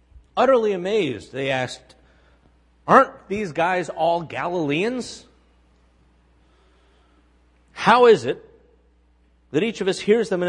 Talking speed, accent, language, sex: 110 wpm, American, English, male